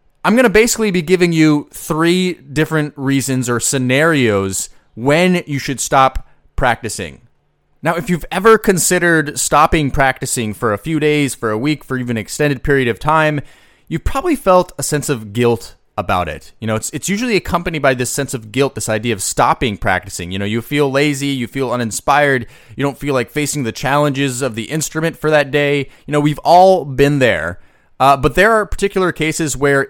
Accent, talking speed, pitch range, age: American, 195 wpm, 120-155 Hz, 30-49